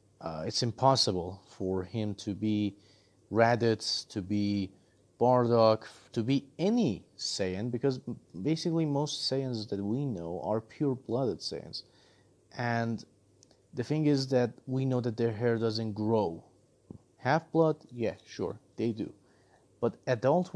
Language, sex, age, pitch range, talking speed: English, male, 30-49, 105-135 Hz, 130 wpm